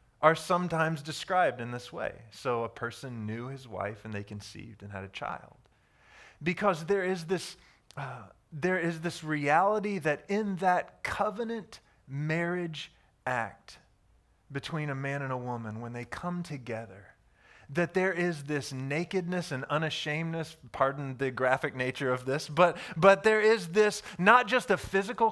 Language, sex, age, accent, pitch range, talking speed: English, male, 30-49, American, 135-185 Hz, 150 wpm